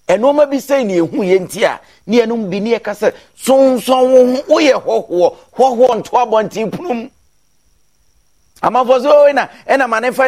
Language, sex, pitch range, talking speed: English, male, 155-235 Hz, 150 wpm